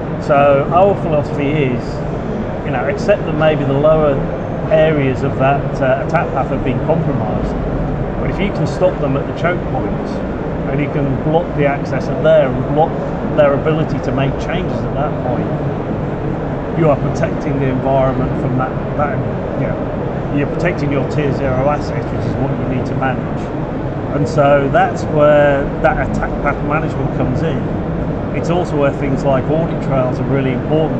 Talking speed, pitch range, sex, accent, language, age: 175 wpm, 135-155 Hz, male, British, English, 40-59